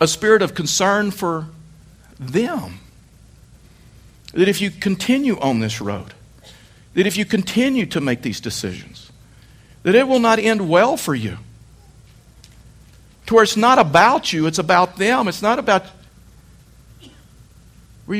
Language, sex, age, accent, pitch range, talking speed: English, male, 60-79, American, 160-225 Hz, 140 wpm